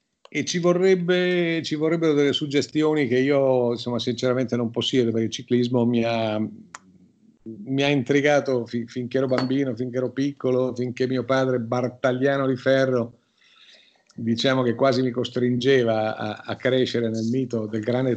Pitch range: 120-140 Hz